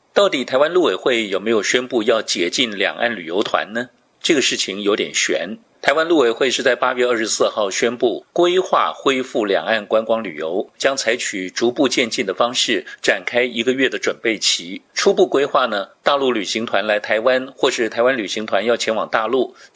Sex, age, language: male, 50-69, Chinese